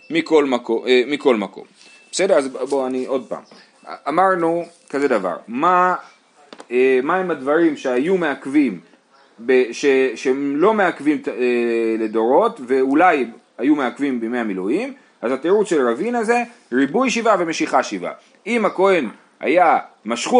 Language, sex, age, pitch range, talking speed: Hebrew, male, 30-49, 155-230 Hz, 130 wpm